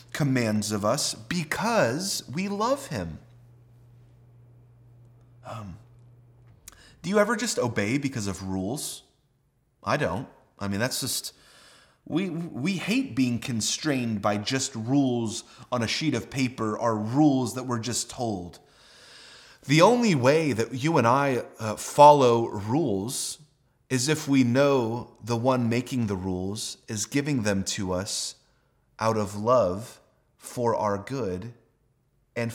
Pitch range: 110-130 Hz